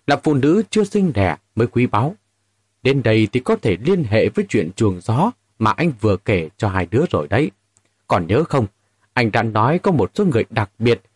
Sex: male